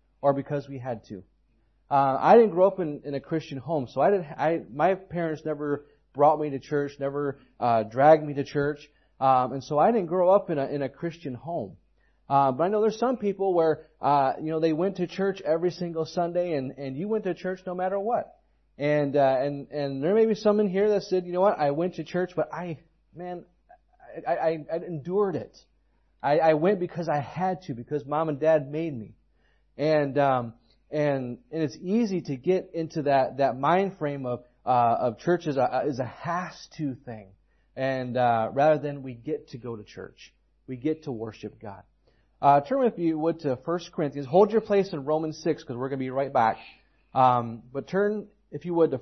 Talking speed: 215 wpm